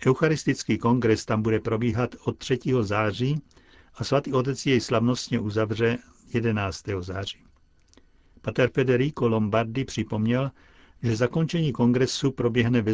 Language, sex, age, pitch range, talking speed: Czech, male, 60-79, 105-125 Hz, 115 wpm